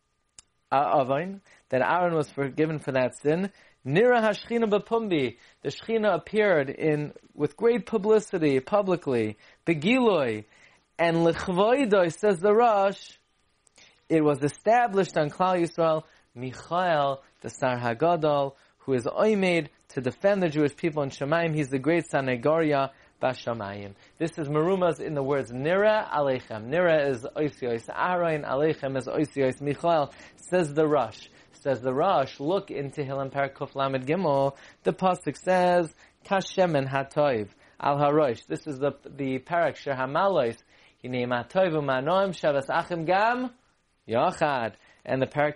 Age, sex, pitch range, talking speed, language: 30-49, male, 135-180 Hz, 135 wpm, English